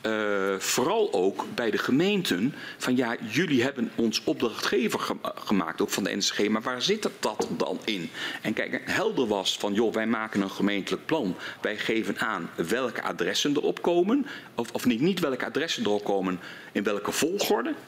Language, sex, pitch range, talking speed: Dutch, male, 120-200 Hz, 180 wpm